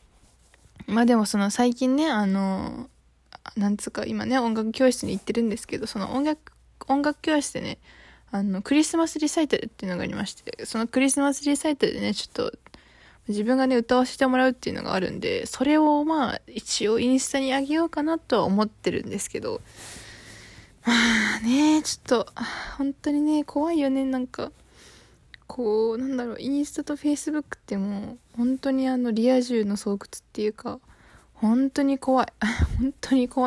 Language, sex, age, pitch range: Japanese, female, 20-39, 225-285 Hz